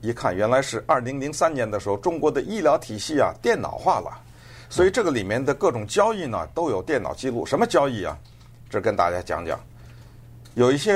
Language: Chinese